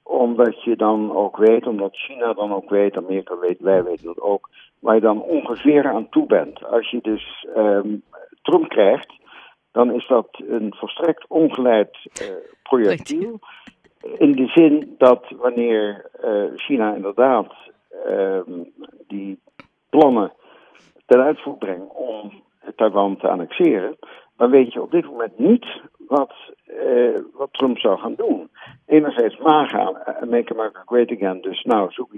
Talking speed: 145 wpm